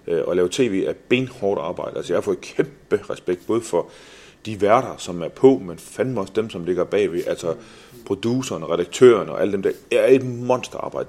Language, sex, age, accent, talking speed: Danish, male, 30-49, native, 195 wpm